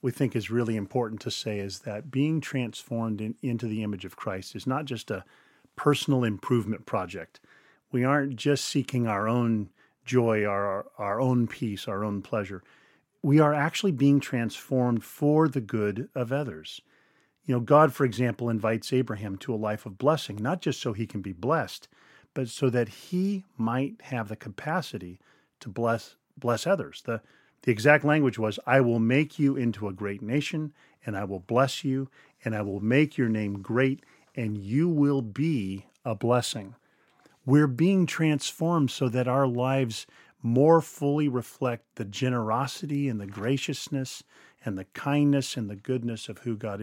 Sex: male